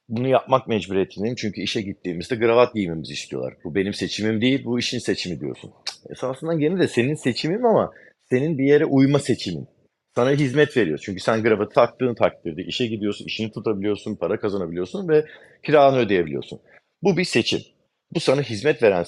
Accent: native